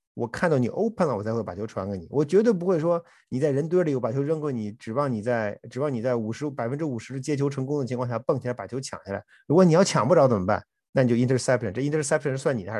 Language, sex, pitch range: Chinese, male, 115-165 Hz